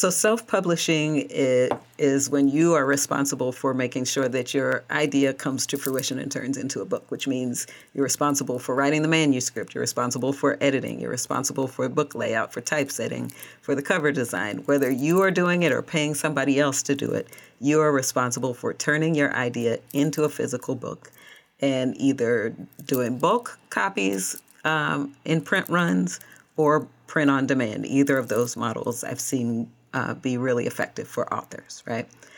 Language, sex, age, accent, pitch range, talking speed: English, female, 40-59, American, 130-155 Hz, 170 wpm